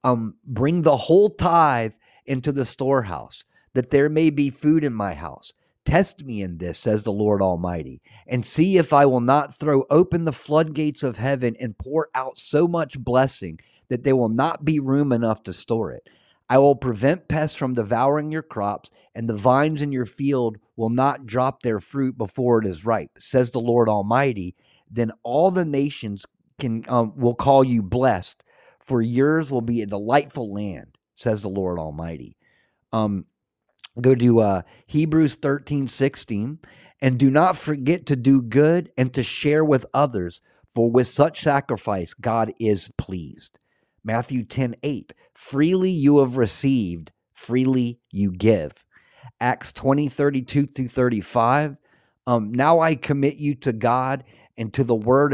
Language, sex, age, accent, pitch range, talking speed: English, male, 50-69, American, 115-145 Hz, 165 wpm